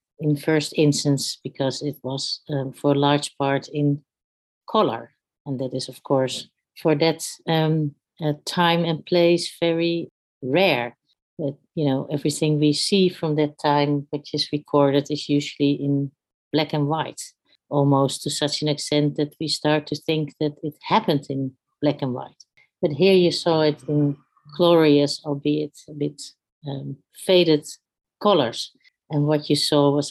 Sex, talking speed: female, 160 wpm